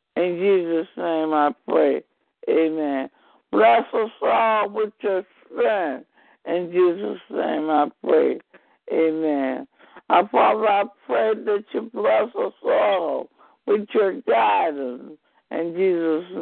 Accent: American